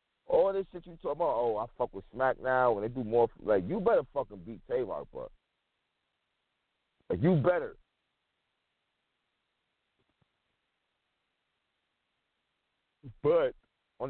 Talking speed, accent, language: 120 wpm, American, English